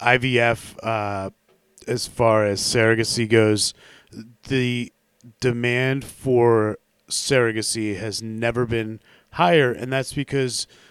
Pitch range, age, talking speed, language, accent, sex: 115-130 Hz, 30-49, 100 wpm, English, American, male